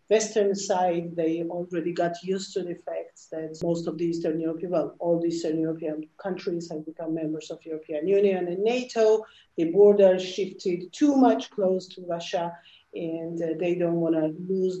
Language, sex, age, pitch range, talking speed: English, female, 50-69, 160-185 Hz, 175 wpm